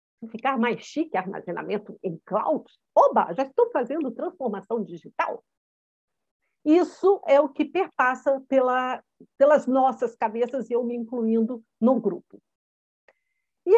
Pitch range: 230-345 Hz